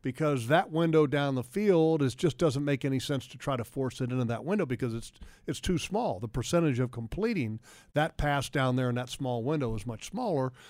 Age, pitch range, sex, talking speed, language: 50-69, 135-155 Hz, male, 225 wpm, English